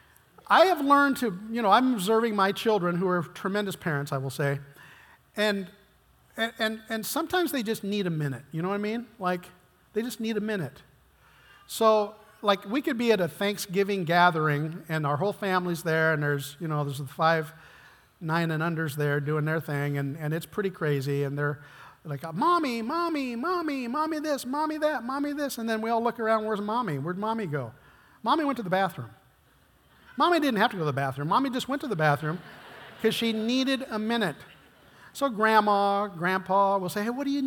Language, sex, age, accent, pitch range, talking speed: English, male, 40-59, American, 170-265 Hz, 200 wpm